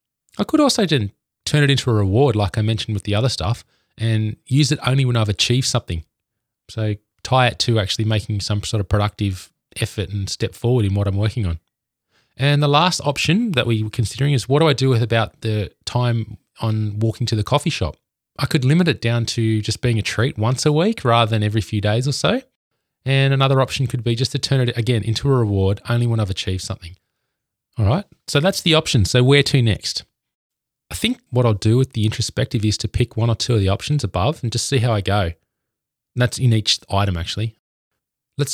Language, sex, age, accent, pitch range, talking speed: English, male, 20-39, Australian, 105-130 Hz, 225 wpm